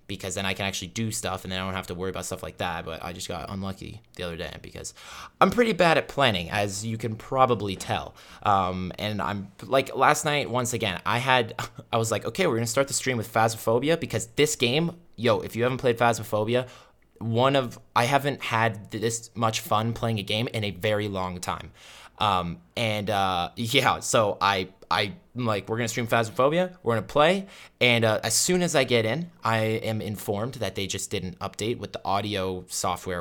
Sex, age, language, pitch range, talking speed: male, 20-39, English, 95-120 Hz, 210 wpm